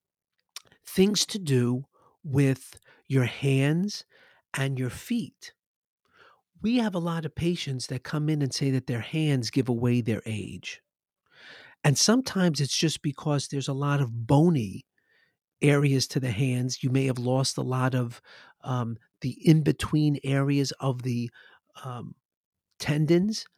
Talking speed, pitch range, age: 145 wpm, 130-160 Hz, 50-69